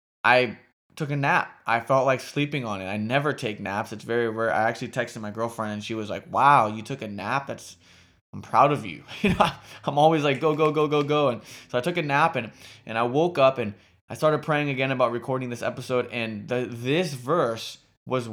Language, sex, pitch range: English, male, 115-140 Hz